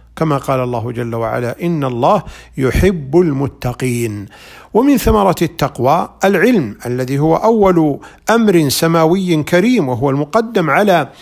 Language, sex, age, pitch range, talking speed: Arabic, male, 50-69, 130-185 Hz, 120 wpm